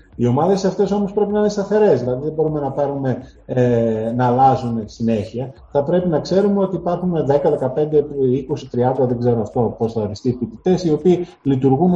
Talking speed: 180 wpm